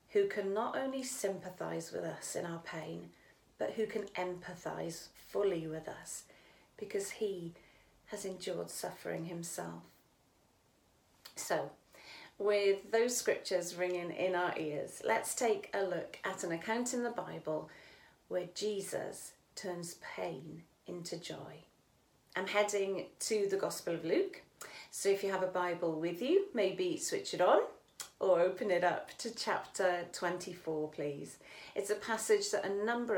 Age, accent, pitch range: 40-59, British, 175-220 Hz